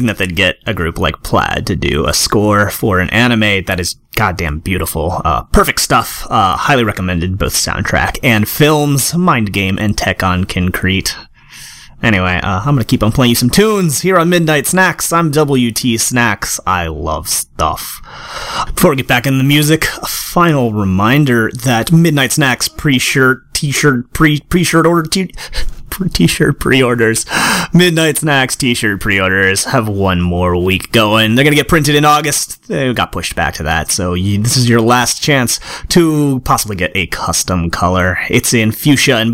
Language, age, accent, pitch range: English, 30-49, American, 95-140 Hz